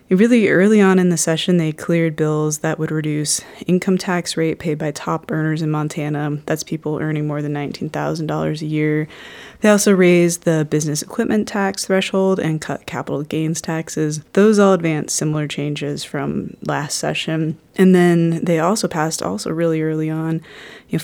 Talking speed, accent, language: 180 wpm, American, English